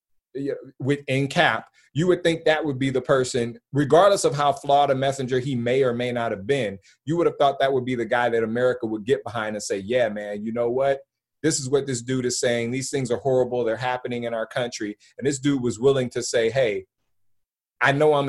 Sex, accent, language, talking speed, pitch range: male, American, English, 235 wpm, 120-150 Hz